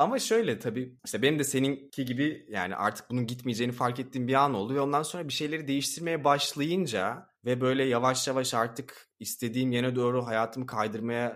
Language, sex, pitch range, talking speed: Turkish, male, 105-155 Hz, 180 wpm